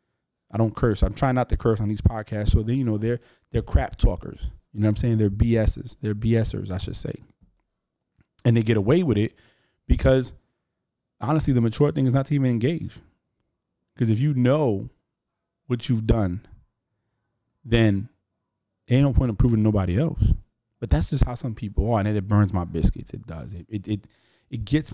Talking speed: 195 wpm